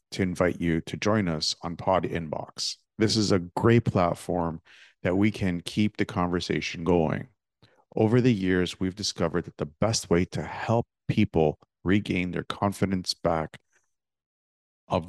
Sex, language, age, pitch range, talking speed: male, English, 50-69, 80-100 Hz, 150 wpm